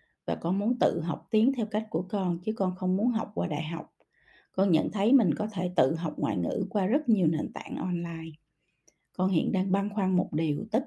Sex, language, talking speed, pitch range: female, Vietnamese, 230 wpm, 175-235 Hz